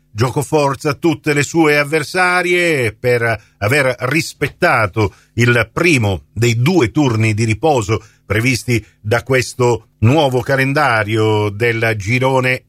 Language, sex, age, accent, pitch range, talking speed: Italian, male, 50-69, native, 110-140 Hz, 110 wpm